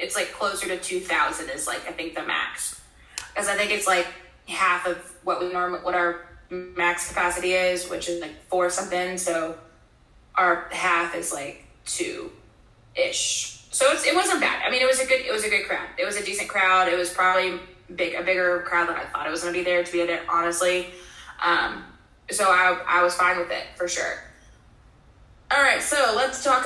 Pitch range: 175-200 Hz